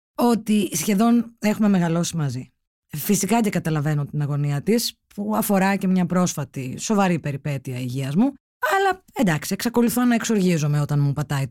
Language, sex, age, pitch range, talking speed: Greek, female, 20-39, 155-235 Hz, 145 wpm